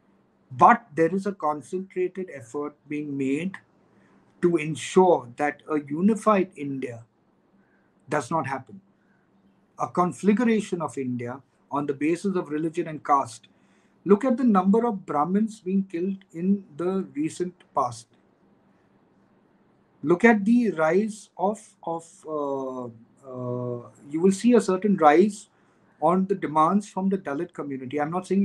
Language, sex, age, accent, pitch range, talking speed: English, male, 50-69, Indian, 150-200 Hz, 135 wpm